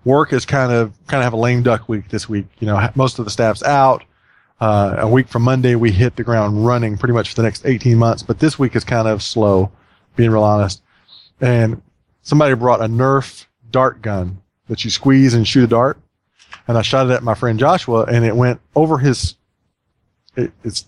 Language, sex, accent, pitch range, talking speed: English, male, American, 110-135 Hz, 215 wpm